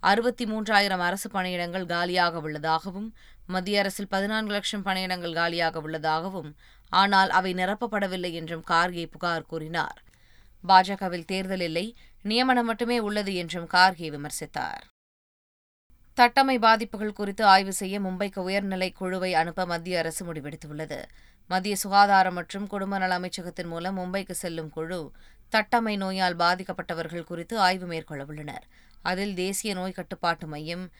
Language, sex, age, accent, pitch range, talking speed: Tamil, female, 20-39, native, 165-195 Hz, 120 wpm